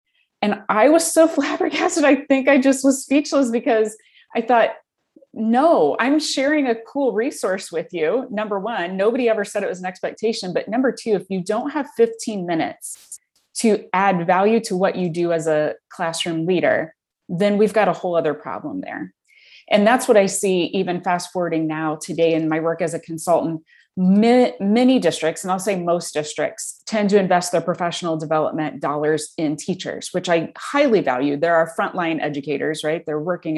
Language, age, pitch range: English, 30-49, 160-220 Hz